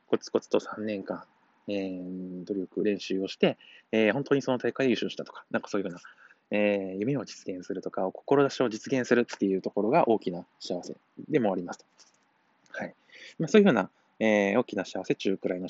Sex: male